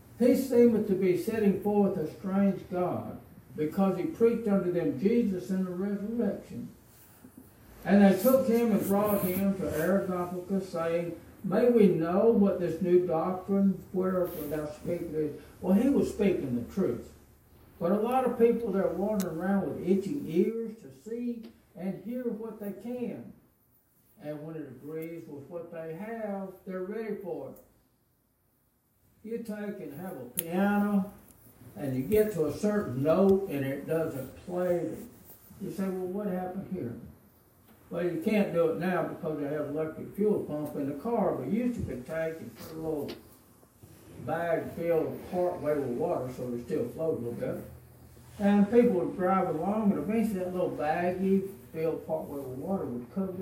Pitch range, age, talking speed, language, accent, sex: 155-205 Hz, 60-79, 170 wpm, English, American, male